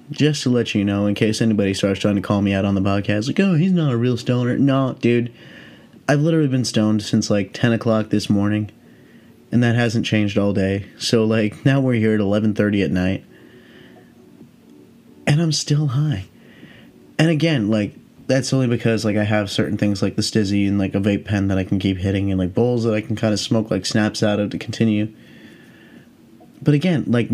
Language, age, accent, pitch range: English, 20-39, American, 100-125 Hz